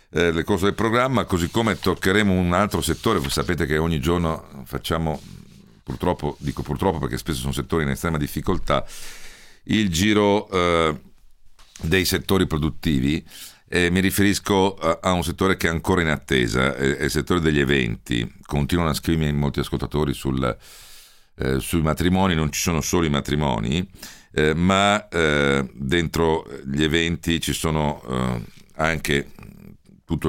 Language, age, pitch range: Italian, 50-69, 70-85 Hz